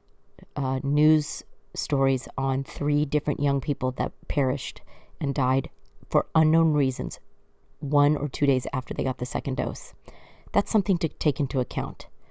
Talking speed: 150 wpm